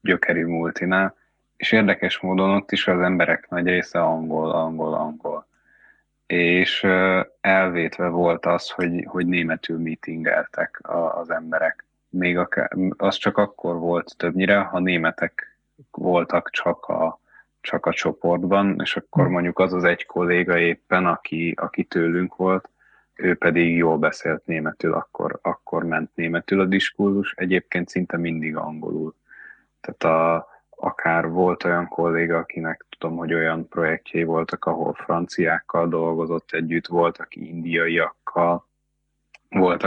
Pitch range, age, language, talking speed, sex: 85-90 Hz, 20-39, Hungarian, 130 wpm, male